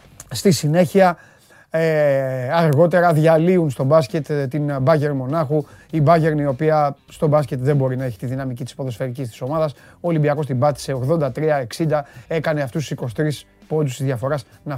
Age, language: 30-49, Greek